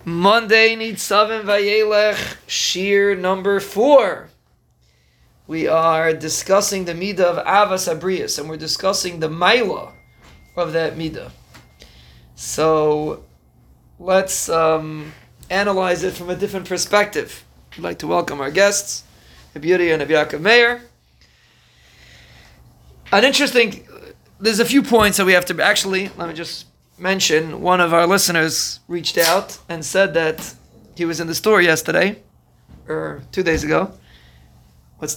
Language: English